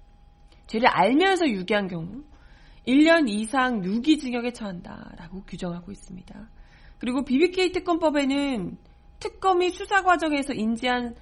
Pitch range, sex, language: 205-310 Hz, female, Korean